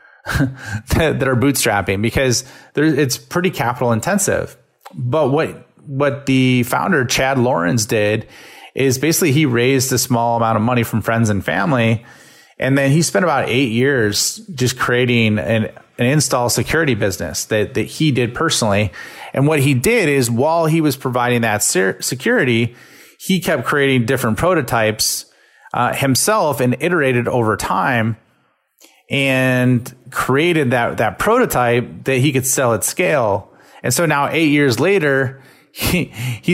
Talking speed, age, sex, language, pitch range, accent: 145 wpm, 30-49, male, English, 115-140 Hz, American